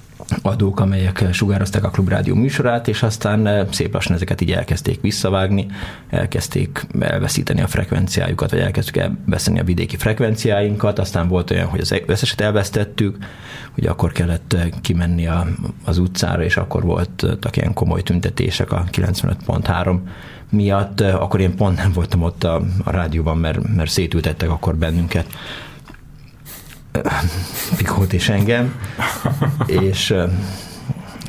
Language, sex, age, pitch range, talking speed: Hungarian, male, 30-49, 90-110 Hz, 120 wpm